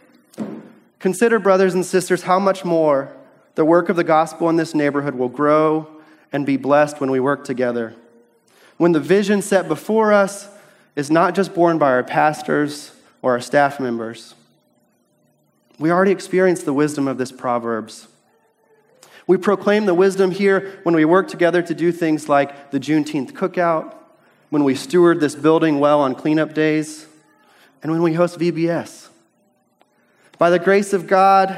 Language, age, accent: English, 30-49, American